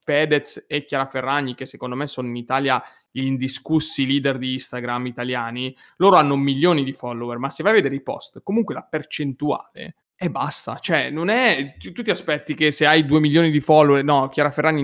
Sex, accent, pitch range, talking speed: male, native, 130-160 Hz, 200 wpm